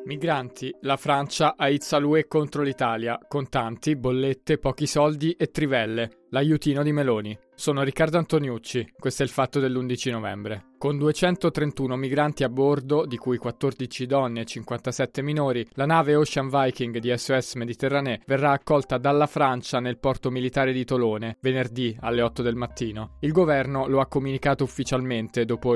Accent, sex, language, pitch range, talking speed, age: native, male, Italian, 125-145 Hz, 155 wpm, 20-39